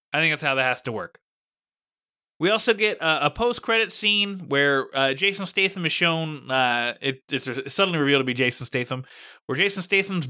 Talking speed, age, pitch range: 190 wpm, 20-39, 135-195 Hz